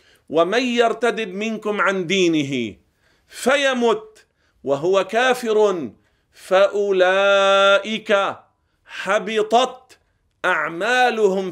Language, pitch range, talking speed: Arabic, 165-225 Hz, 55 wpm